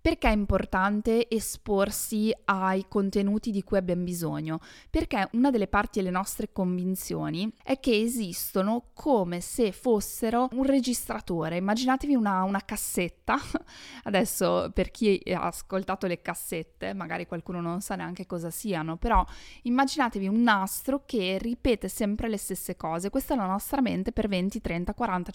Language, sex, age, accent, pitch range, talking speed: Italian, female, 20-39, native, 190-250 Hz, 145 wpm